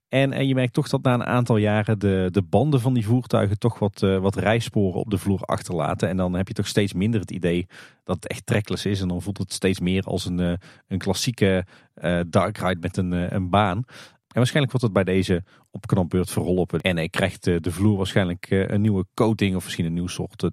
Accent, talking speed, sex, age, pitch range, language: Dutch, 215 wpm, male, 40-59, 95-120 Hz, Dutch